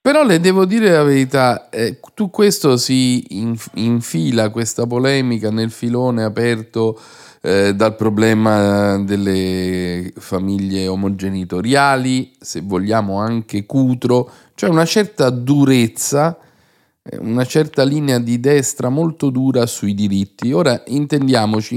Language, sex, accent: Italian, male, native